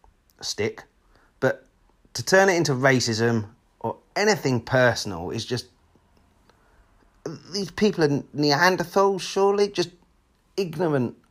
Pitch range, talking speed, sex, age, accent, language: 100-125 Hz, 100 wpm, male, 30-49, British, English